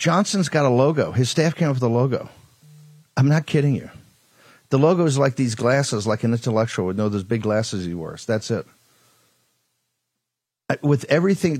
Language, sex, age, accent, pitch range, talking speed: English, male, 50-69, American, 115-145 Hz, 180 wpm